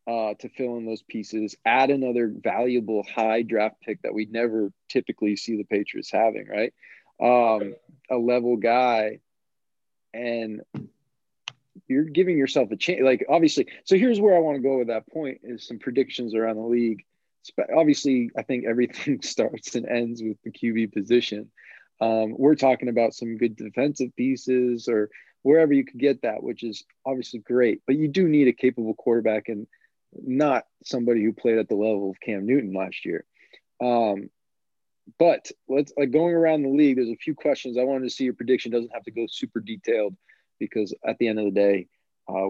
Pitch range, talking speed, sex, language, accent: 110-130 Hz, 185 wpm, male, English, American